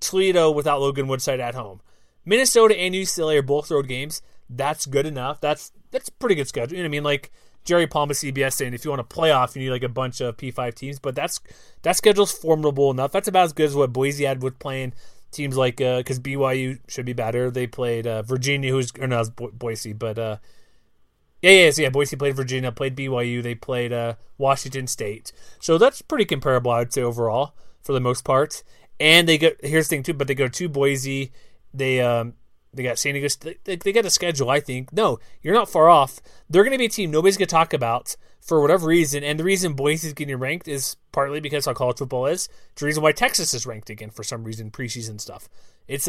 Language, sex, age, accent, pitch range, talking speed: English, male, 20-39, American, 125-155 Hz, 235 wpm